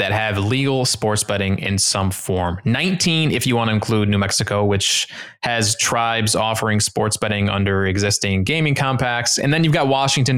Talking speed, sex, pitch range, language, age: 180 wpm, male, 105-135 Hz, English, 20-39